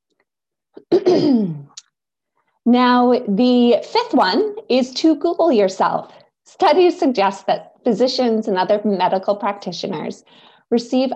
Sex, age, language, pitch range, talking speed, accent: female, 30-49, English, 205-280 Hz, 90 wpm, American